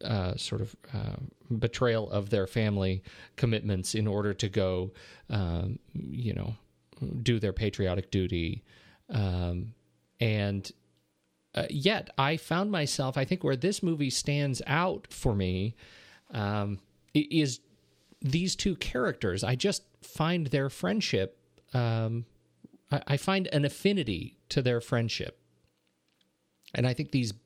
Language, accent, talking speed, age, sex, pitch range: English, American, 125 wpm, 40-59, male, 100-135 Hz